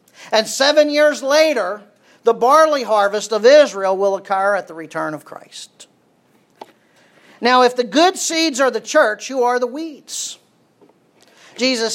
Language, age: English, 50-69